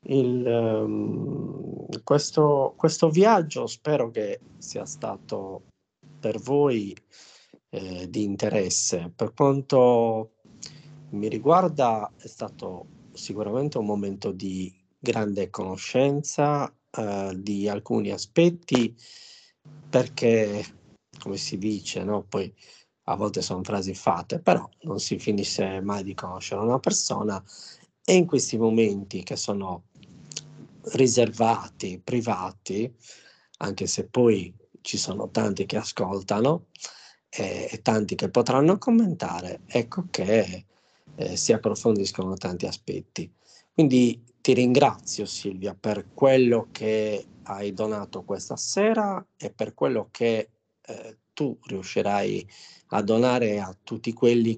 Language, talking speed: Italian, 110 wpm